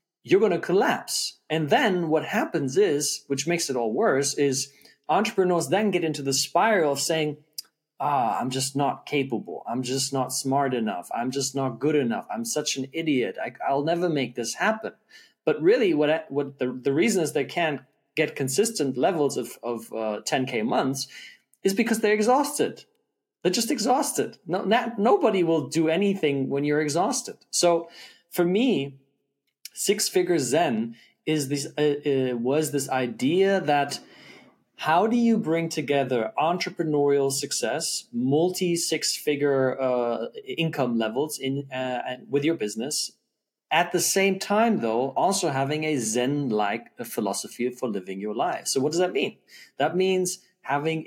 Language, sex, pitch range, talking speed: English, male, 135-180 Hz, 155 wpm